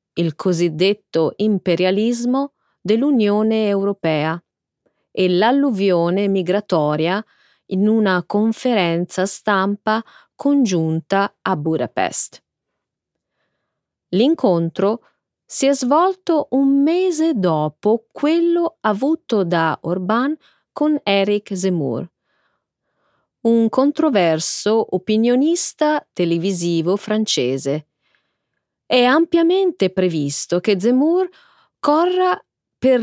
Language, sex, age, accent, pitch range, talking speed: Italian, female, 30-49, native, 170-275 Hz, 75 wpm